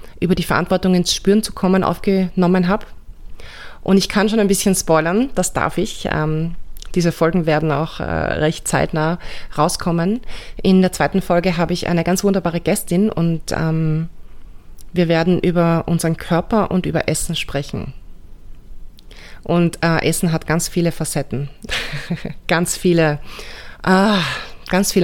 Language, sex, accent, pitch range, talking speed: German, female, German, 160-185 Hz, 145 wpm